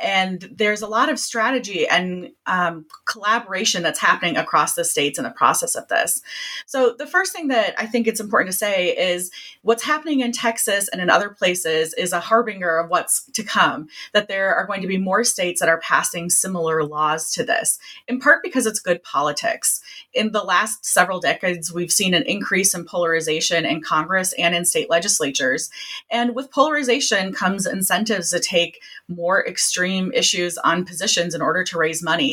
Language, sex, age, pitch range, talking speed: English, female, 30-49, 170-225 Hz, 185 wpm